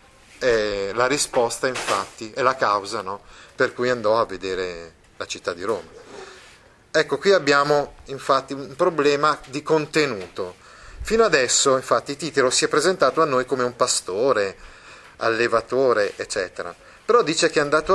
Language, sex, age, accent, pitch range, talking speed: Italian, male, 30-49, native, 120-160 Hz, 145 wpm